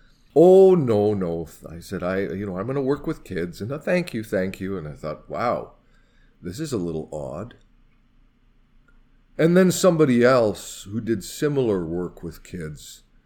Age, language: 50-69, English